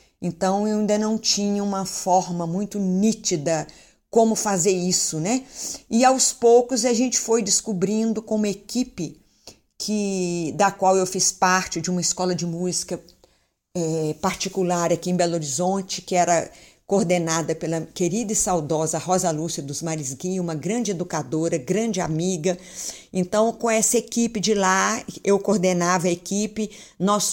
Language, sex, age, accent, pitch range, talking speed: Portuguese, female, 50-69, Brazilian, 180-225 Hz, 145 wpm